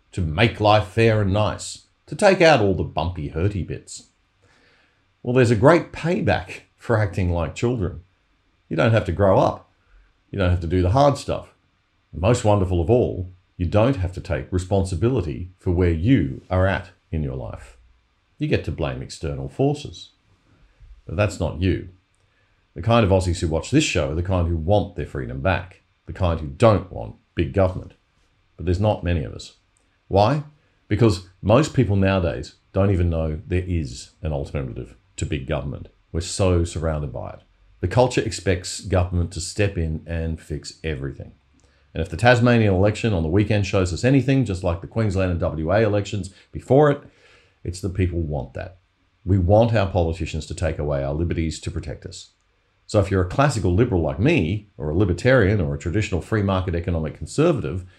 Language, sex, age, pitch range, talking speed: English, male, 50-69, 85-105 Hz, 185 wpm